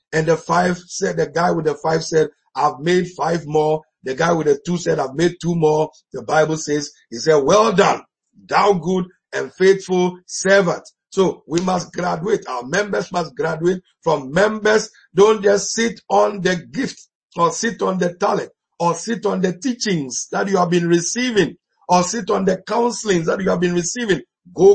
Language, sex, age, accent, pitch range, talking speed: English, male, 50-69, Nigerian, 170-210 Hz, 190 wpm